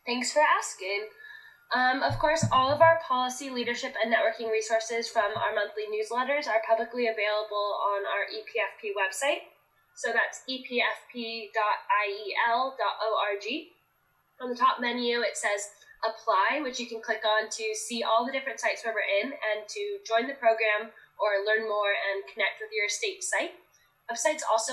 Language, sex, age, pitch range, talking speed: English, female, 10-29, 215-285 Hz, 160 wpm